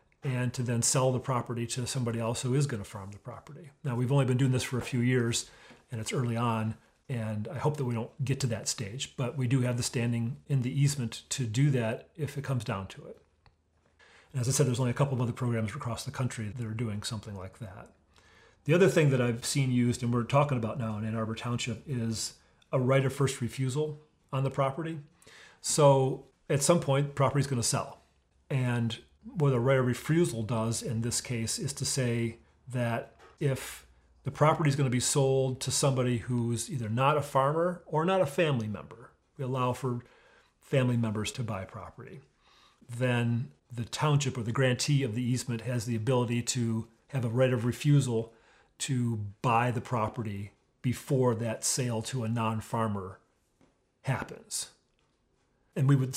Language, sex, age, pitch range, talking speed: English, male, 40-59, 115-135 Hz, 195 wpm